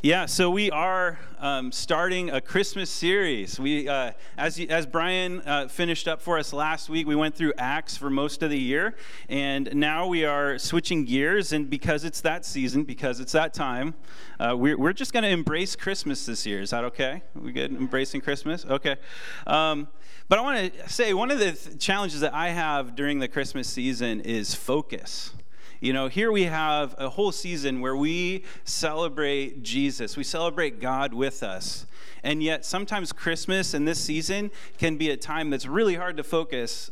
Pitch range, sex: 140-170 Hz, male